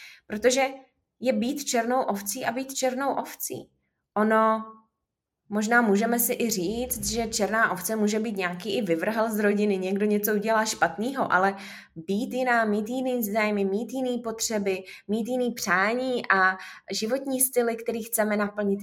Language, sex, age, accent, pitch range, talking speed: Czech, female, 20-39, native, 195-255 Hz, 150 wpm